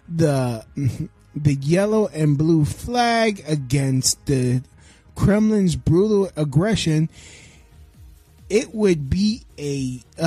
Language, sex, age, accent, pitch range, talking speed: English, male, 20-39, American, 155-235 Hz, 90 wpm